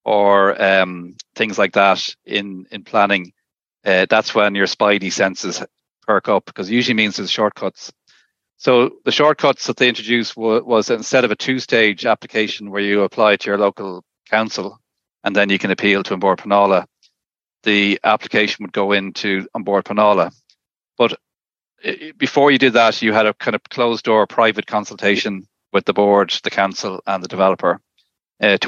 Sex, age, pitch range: male, 40-59, 100-115 Hz